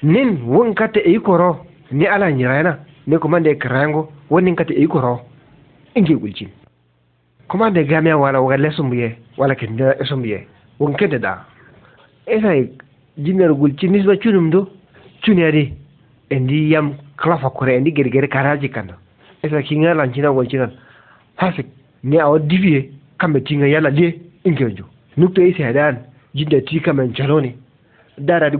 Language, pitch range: Arabic, 130-165 Hz